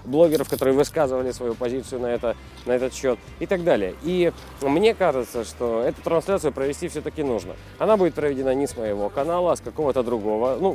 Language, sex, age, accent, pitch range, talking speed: Russian, male, 30-49, native, 145-200 Hz, 190 wpm